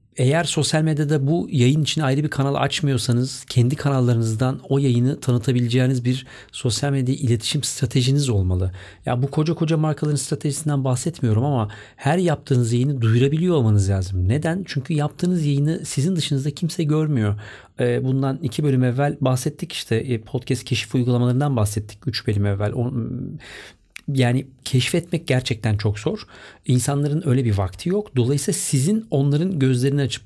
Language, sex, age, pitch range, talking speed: Turkish, male, 40-59, 120-150 Hz, 140 wpm